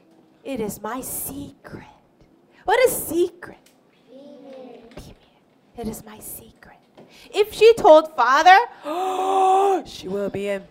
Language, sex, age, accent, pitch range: Korean, female, 30-49, American, 250-375 Hz